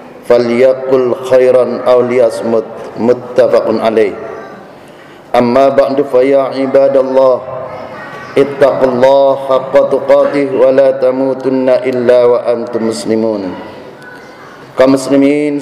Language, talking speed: Indonesian, 80 wpm